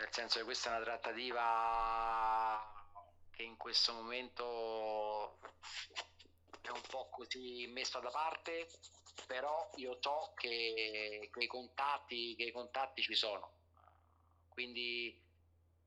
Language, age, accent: Italian, 40-59, native